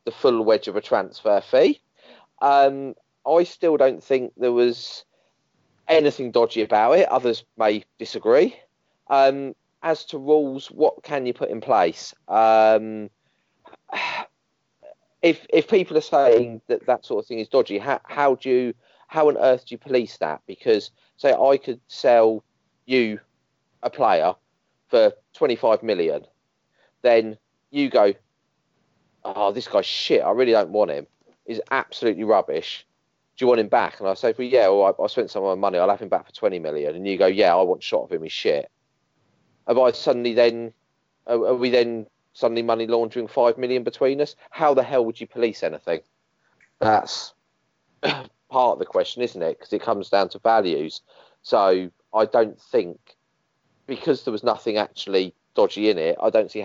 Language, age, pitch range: English, 30-49, 115-160 Hz